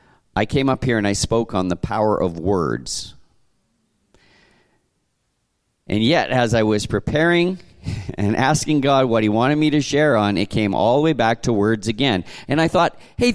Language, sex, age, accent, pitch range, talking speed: English, male, 50-69, American, 110-150 Hz, 185 wpm